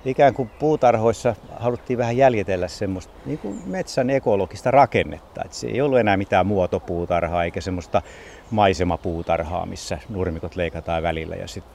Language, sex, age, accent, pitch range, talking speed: Finnish, male, 60-79, native, 90-120 Hz, 140 wpm